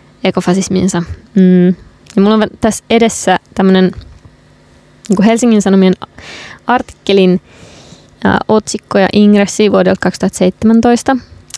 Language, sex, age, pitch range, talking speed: Finnish, female, 20-39, 185-215 Hz, 90 wpm